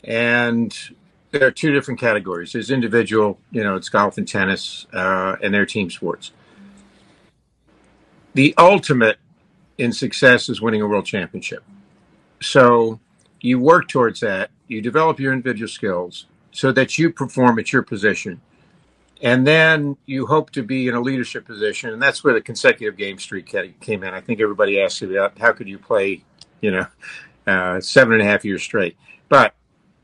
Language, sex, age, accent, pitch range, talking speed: English, male, 50-69, American, 110-145 Hz, 165 wpm